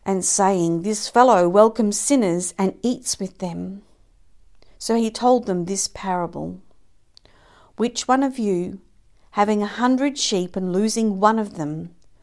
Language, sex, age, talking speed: English, female, 50-69, 140 wpm